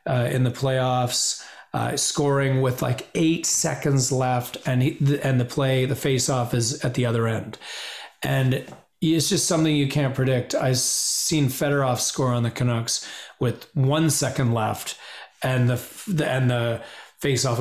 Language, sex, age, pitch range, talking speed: English, male, 30-49, 125-150 Hz, 160 wpm